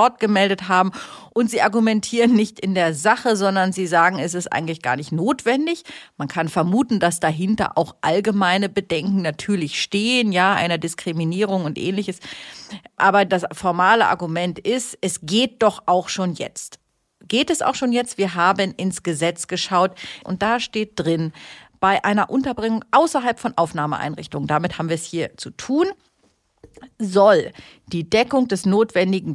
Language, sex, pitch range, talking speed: German, female, 170-215 Hz, 155 wpm